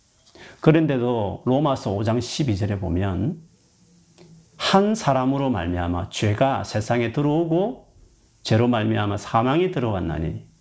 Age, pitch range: 40-59, 100-150 Hz